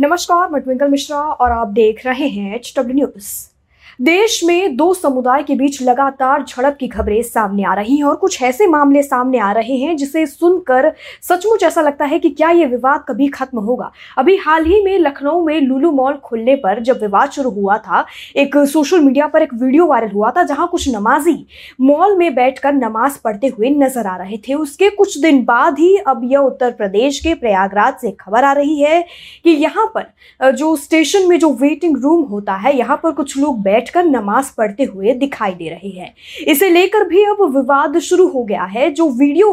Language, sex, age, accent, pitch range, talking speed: Hindi, female, 20-39, native, 250-330 Hz, 205 wpm